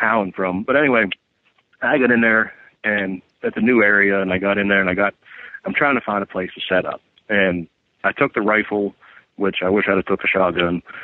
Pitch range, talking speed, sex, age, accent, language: 95-115 Hz, 235 wpm, male, 40-59, American, English